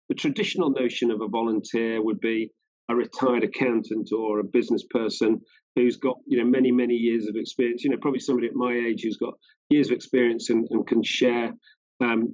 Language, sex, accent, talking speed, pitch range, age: English, male, British, 200 wpm, 120-140 Hz, 40-59